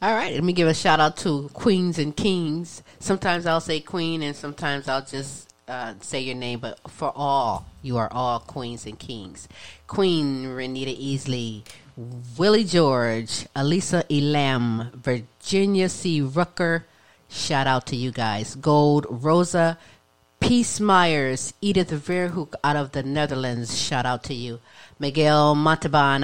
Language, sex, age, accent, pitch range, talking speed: English, female, 40-59, American, 130-160 Hz, 140 wpm